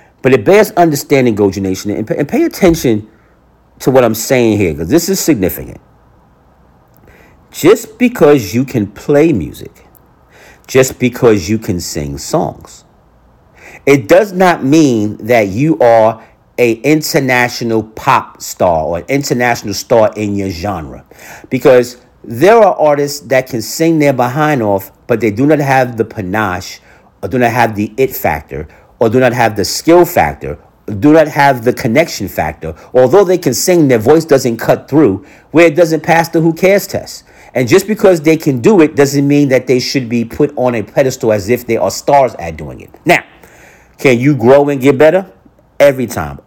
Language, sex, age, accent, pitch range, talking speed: English, male, 50-69, American, 110-150 Hz, 175 wpm